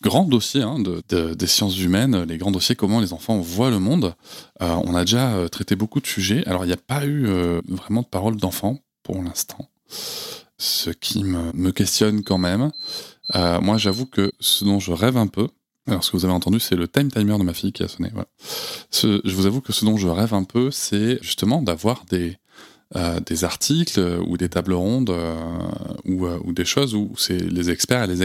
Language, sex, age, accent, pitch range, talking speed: French, male, 20-39, French, 90-115 Hz, 225 wpm